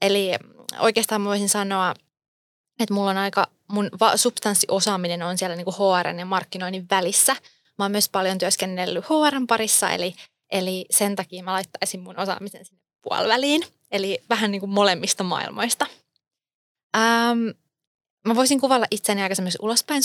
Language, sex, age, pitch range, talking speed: Finnish, female, 20-39, 180-220 Hz, 145 wpm